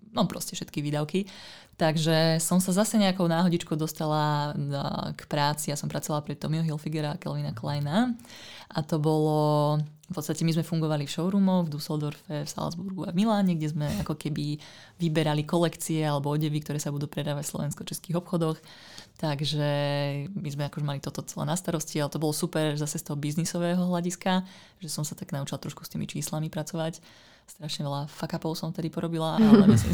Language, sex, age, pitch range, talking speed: Slovak, female, 20-39, 150-180 Hz, 180 wpm